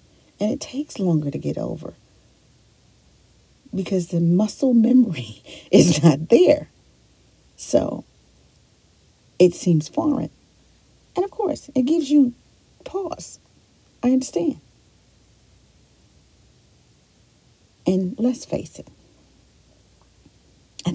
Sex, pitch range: female, 155-255 Hz